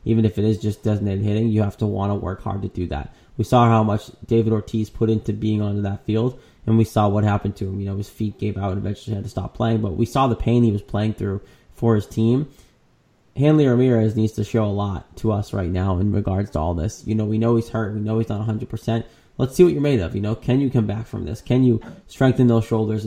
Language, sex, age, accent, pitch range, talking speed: English, male, 20-39, American, 105-120 Hz, 275 wpm